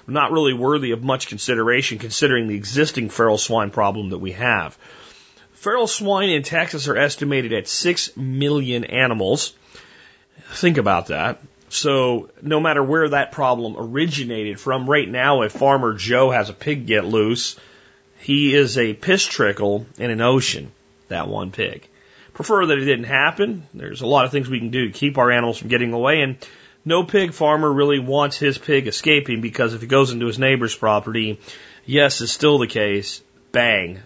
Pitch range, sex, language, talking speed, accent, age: 115-145 Hz, male, English, 175 wpm, American, 40-59